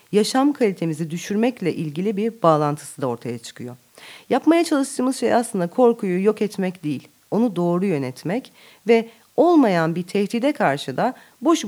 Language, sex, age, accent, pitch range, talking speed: Turkish, female, 40-59, native, 150-240 Hz, 140 wpm